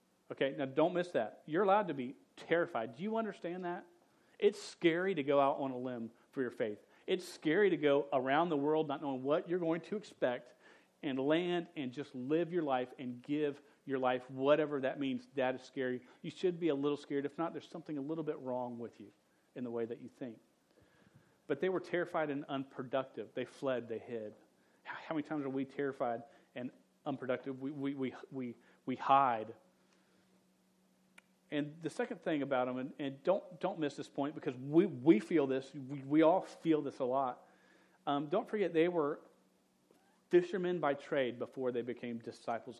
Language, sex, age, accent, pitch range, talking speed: English, male, 40-59, American, 130-165 Hz, 195 wpm